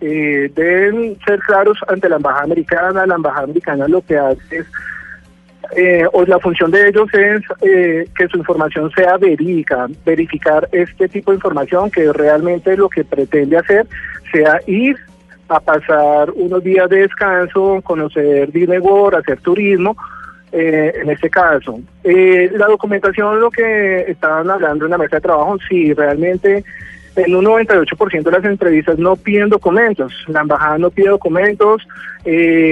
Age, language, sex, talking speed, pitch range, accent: 30-49, Spanish, male, 155 wpm, 155-195 Hz, Colombian